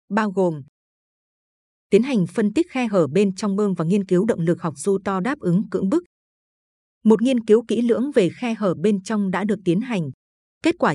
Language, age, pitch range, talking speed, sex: Vietnamese, 20-39, 180-225 Hz, 215 wpm, female